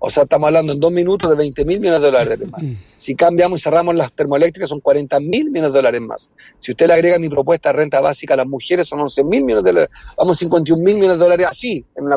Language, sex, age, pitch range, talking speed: Spanish, male, 40-59, 155-210 Hz, 280 wpm